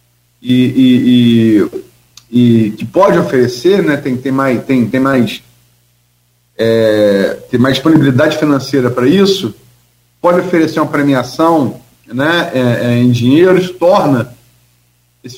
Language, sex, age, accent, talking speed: Portuguese, male, 40-59, Brazilian, 100 wpm